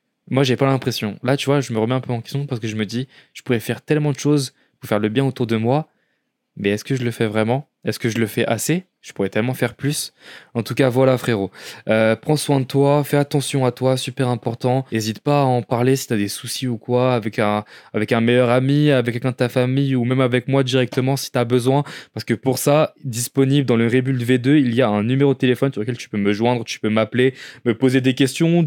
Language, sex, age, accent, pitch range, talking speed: French, male, 20-39, French, 120-145 Hz, 265 wpm